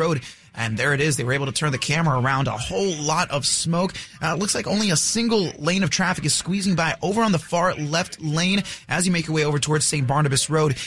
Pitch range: 145-175 Hz